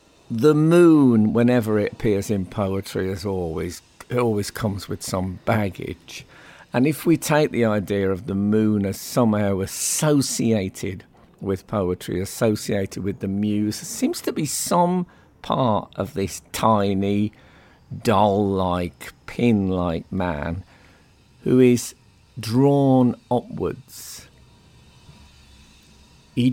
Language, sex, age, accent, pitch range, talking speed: English, male, 50-69, British, 100-145 Hz, 110 wpm